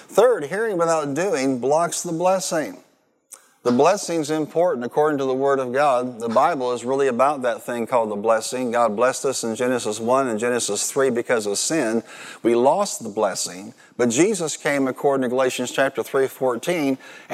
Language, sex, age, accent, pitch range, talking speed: English, male, 50-69, American, 125-155 Hz, 175 wpm